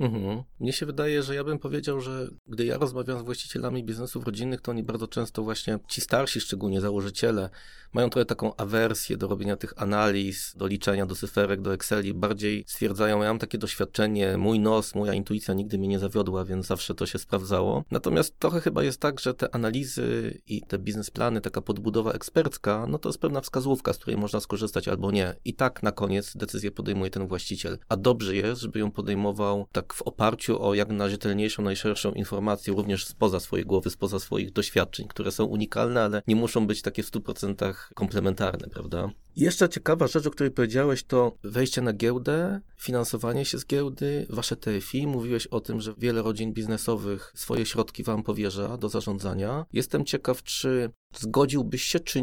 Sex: male